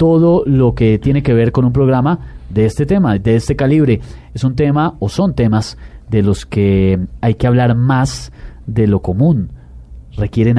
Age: 30-49